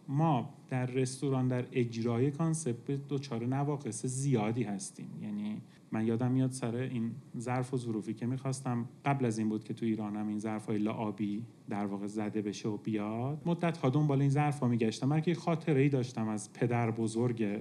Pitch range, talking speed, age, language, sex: 125-160 Hz, 180 wpm, 30-49, Persian, male